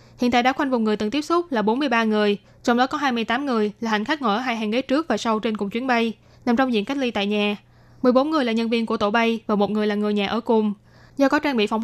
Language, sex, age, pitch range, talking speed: Vietnamese, female, 10-29, 215-270 Hz, 305 wpm